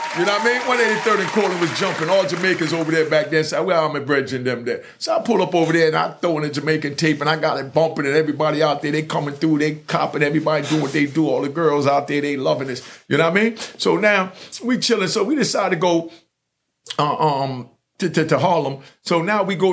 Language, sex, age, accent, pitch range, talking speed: English, male, 50-69, American, 145-185 Hz, 260 wpm